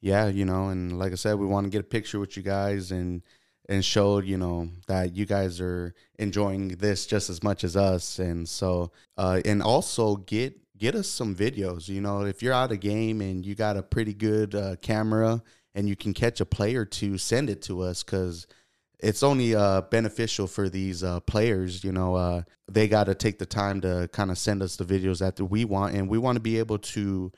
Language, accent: English, American